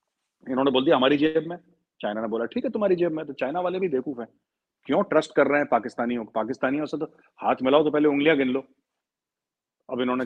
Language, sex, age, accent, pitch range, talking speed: English, male, 40-59, Indian, 130-195 Hz, 235 wpm